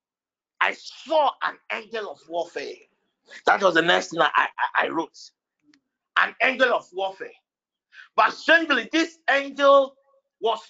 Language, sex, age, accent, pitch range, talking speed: English, male, 50-69, Nigerian, 220-305 Hz, 135 wpm